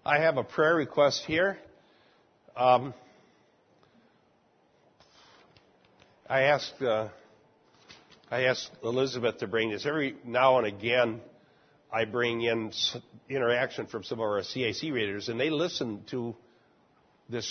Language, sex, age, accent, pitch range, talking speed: English, male, 60-79, American, 115-145 Hz, 120 wpm